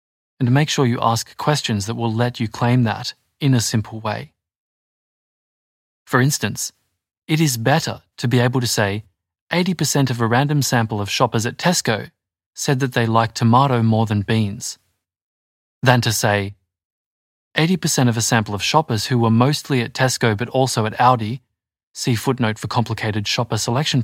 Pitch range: 110-140 Hz